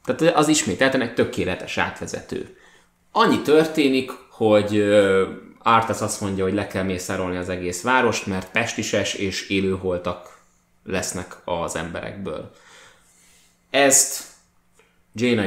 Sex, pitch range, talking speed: male, 95-120 Hz, 110 wpm